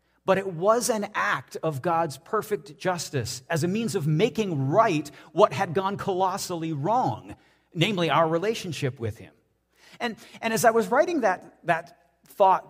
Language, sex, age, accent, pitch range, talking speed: English, male, 40-59, American, 120-185 Hz, 160 wpm